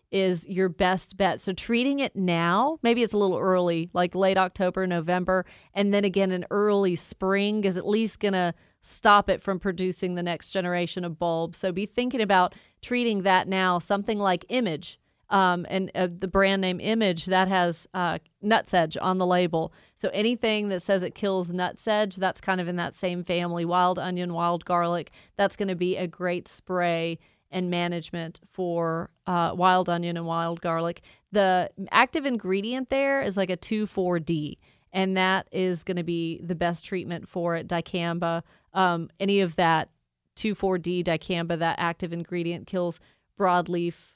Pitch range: 175-200 Hz